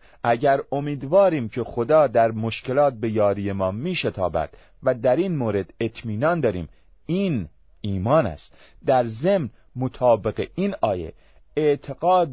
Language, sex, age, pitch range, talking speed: Persian, male, 40-59, 100-155 Hz, 120 wpm